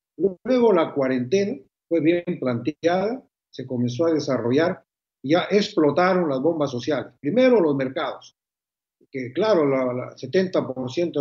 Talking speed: 120 wpm